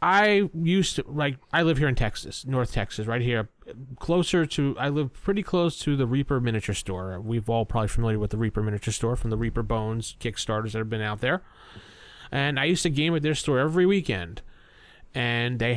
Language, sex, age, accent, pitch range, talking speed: English, male, 30-49, American, 115-170 Hz, 210 wpm